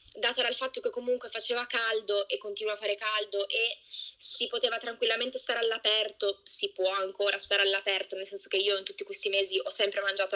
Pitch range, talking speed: 205-260 Hz, 195 wpm